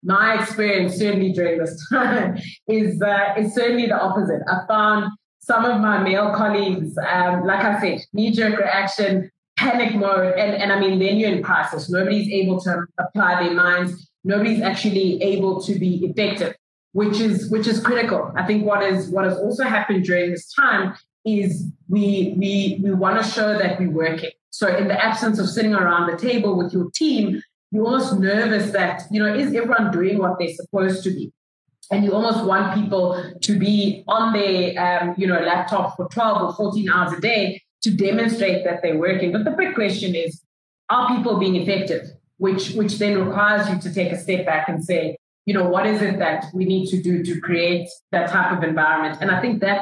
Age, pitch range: 20-39, 180-210 Hz